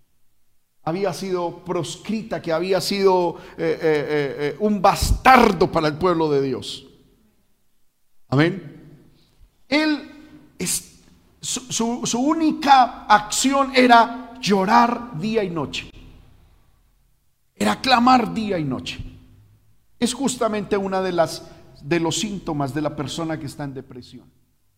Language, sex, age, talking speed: Spanish, male, 50-69, 115 wpm